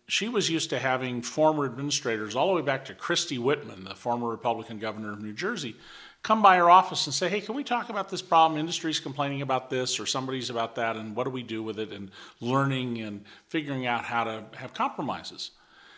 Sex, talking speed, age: male, 220 wpm, 50-69